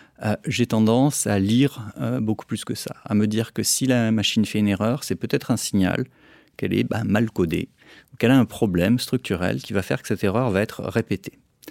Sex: male